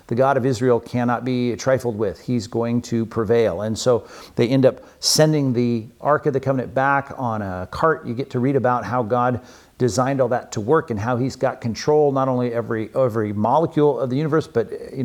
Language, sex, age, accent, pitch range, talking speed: English, male, 50-69, American, 110-140 Hz, 215 wpm